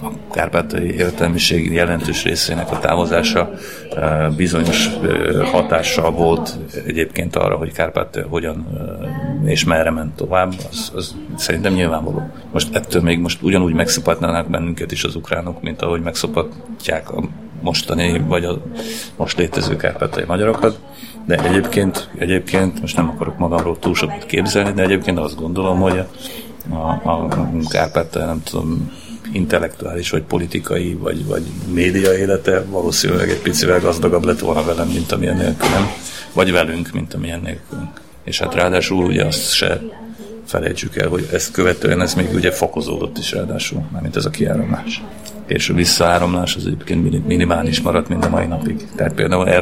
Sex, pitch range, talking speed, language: male, 80-90 Hz, 145 wpm, Hungarian